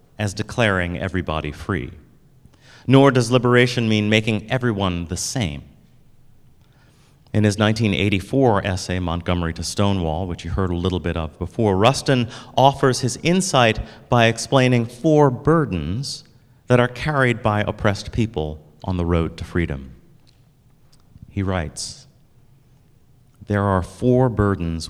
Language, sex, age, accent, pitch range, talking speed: English, male, 30-49, American, 95-130 Hz, 125 wpm